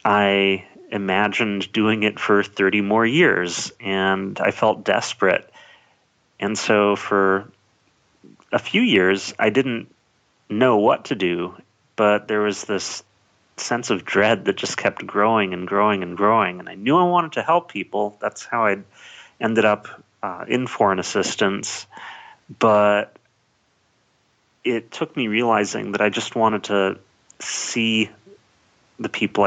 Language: English